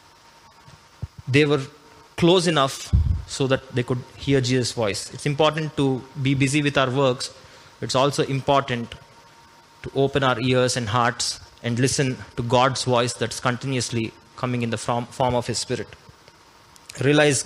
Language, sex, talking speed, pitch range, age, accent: Telugu, male, 150 wpm, 120-145 Hz, 20-39, native